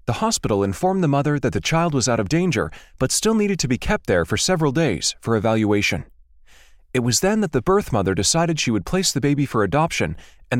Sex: male